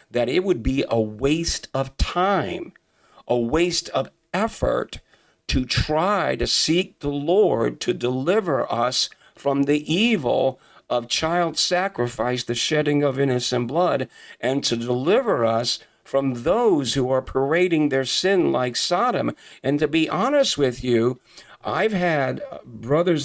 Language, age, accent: English, 50-69, American